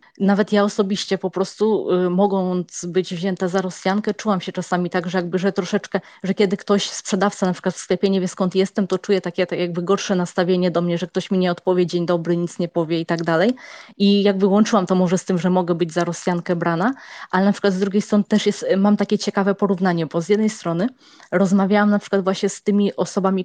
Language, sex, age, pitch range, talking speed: Polish, female, 20-39, 180-205 Hz, 230 wpm